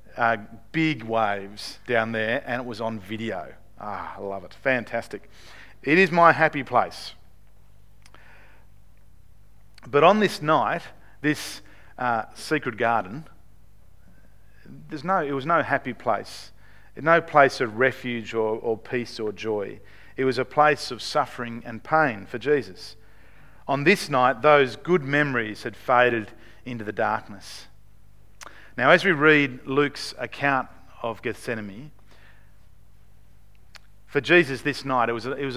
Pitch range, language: 100-135 Hz, English